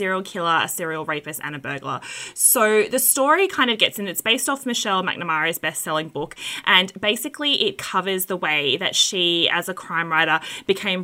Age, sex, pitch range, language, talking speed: 20-39, female, 165-190 Hz, English, 190 wpm